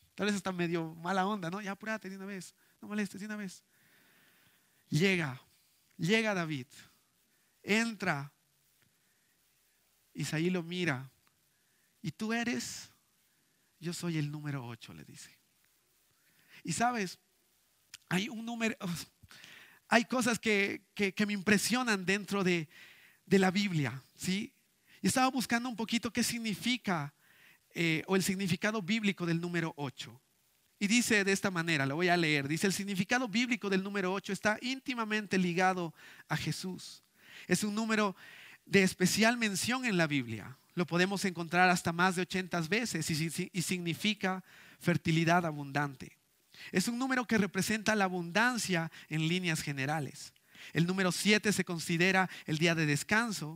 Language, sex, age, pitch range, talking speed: Spanish, male, 50-69, 165-210 Hz, 145 wpm